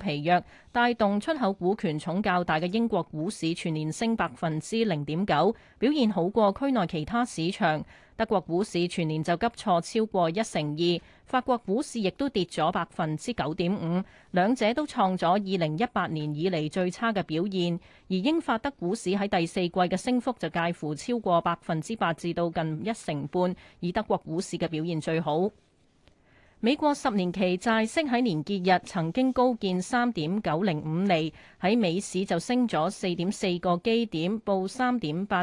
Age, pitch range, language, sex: 30-49, 170-225 Hz, Chinese, female